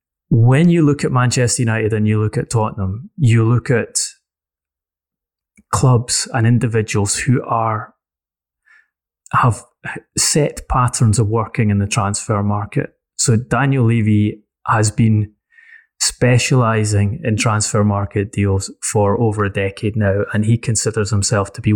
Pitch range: 100-120 Hz